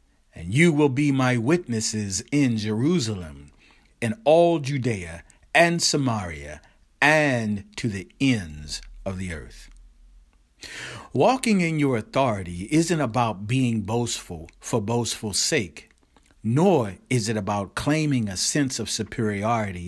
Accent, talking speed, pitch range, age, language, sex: American, 120 wpm, 95-145 Hz, 50-69, English, male